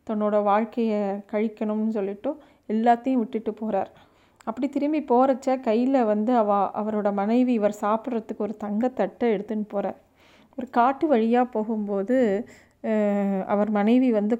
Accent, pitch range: native, 210-240 Hz